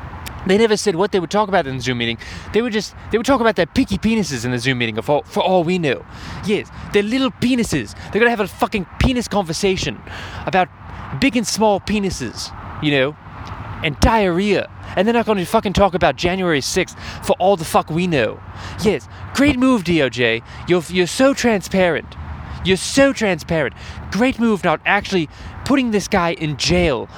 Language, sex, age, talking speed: English, male, 20-39, 190 wpm